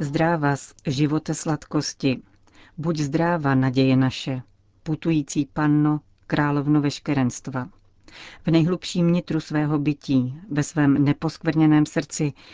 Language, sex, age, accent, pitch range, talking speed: Czech, female, 40-59, native, 140-160 Hz, 100 wpm